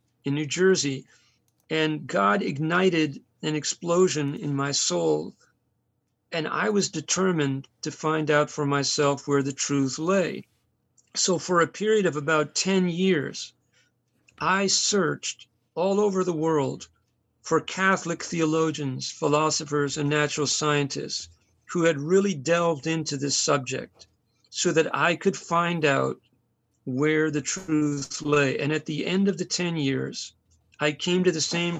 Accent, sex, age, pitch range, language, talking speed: American, male, 50-69, 140-175 Hz, English, 140 wpm